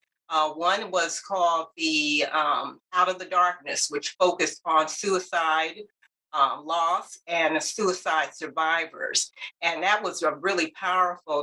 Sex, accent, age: female, American, 50-69